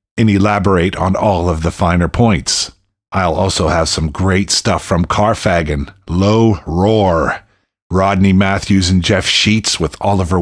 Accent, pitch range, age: American, 90-105 Hz, 50-69